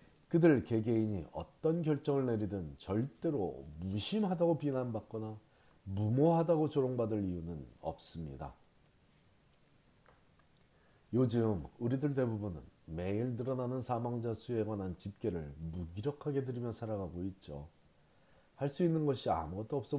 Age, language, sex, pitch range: 40-59, Korean, male, 95-135 Hz